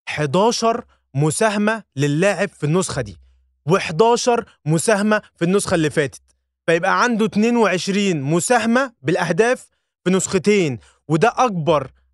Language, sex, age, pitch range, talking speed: Arabic, male, 20-39, 155-220 Hz, 105 wpm